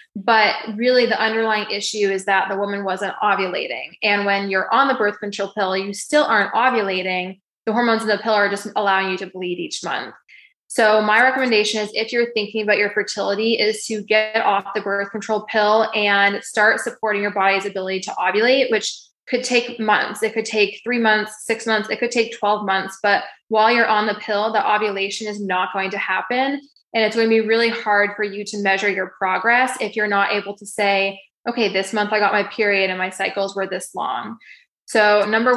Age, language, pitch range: 20-39, English, 195-220 Hz